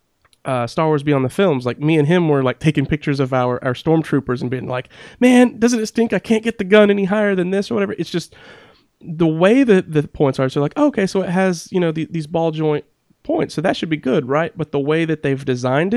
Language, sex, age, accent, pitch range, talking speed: English, male, 30-49, American, 130-160 Hz, 250 wpm